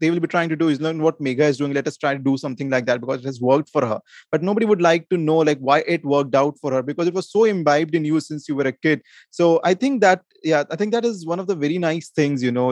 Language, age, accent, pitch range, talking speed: English, 20-39, Indian, 145-180 Hz, 315 wpm